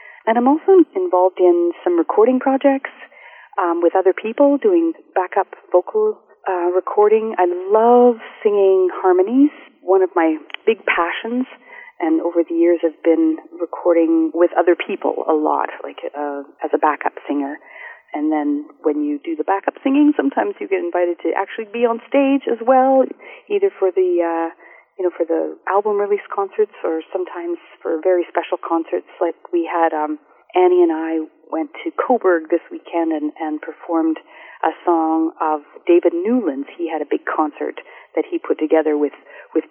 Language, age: English, 30-49